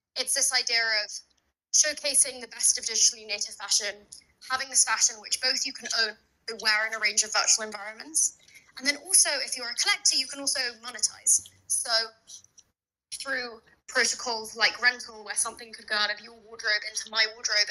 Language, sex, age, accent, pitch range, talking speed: English, female, 20-39, British, 215-255 Hz, 180 wpm